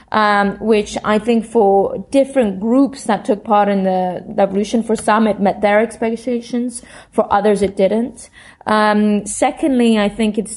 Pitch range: 195-220 Hz